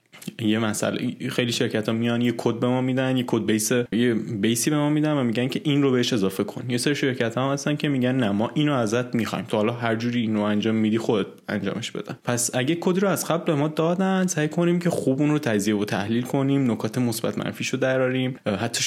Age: 20-39